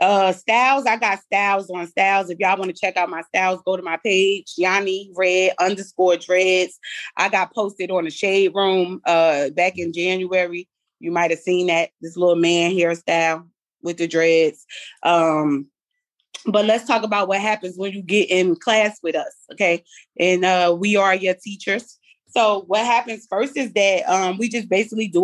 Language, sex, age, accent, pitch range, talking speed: English, female, 20-39, American, 185-230 Hz, 185 wpm